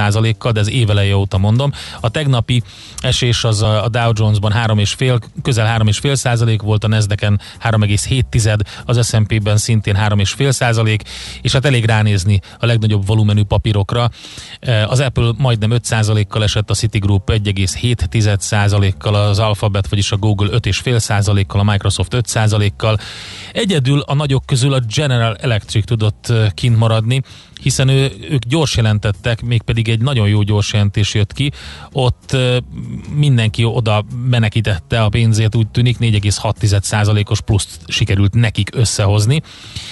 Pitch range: 105-120 Hz